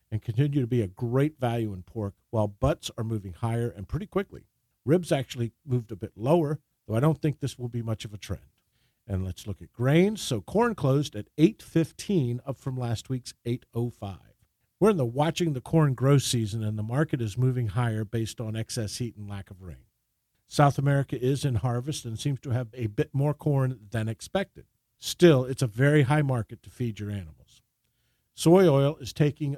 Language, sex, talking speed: English, male, 205 wpm